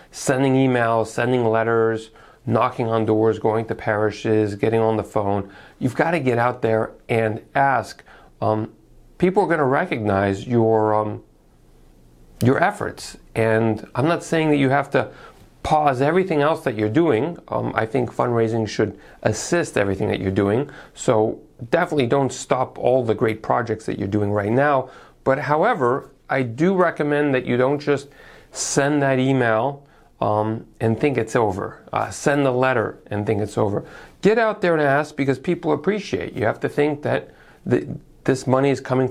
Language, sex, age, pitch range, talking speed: English, male, 40-59, 110-145 Hz, 170 wpm